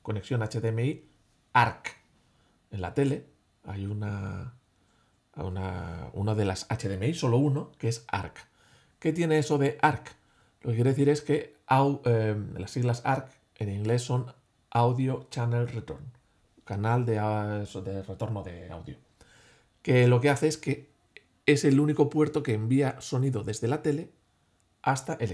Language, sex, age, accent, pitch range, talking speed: Spanish, male, 40-59, Spanish, 105-140 Hz, 145 wpm